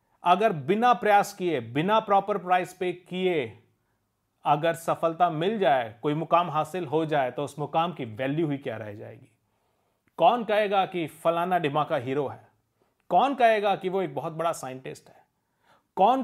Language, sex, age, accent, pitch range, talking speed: Hindi, male, 40-59, native, 150-200 Hz, 165 wpm